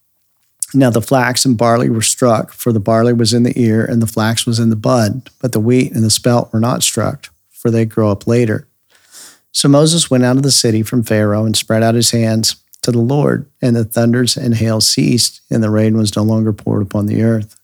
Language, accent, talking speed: English, American, 230 wpm